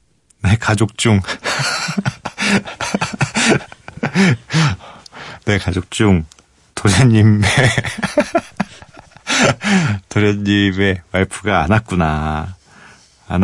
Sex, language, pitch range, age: male, Korean, 90-140 Hz, 40-59